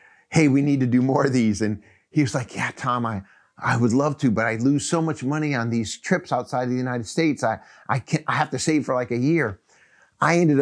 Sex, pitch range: male, 115-140 Hz